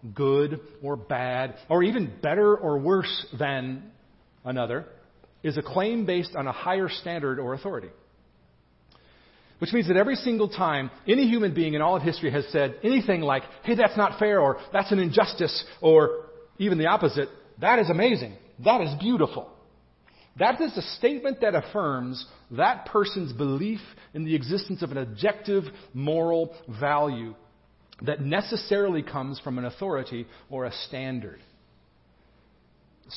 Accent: American